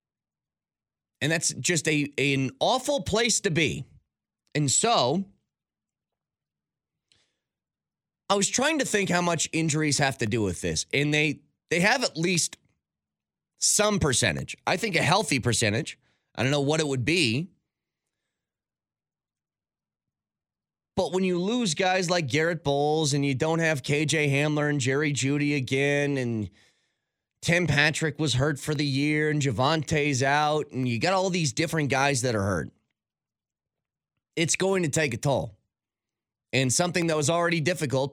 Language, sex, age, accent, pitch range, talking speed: English, male, 30-49, American, 130-170 Hz, 150 wpm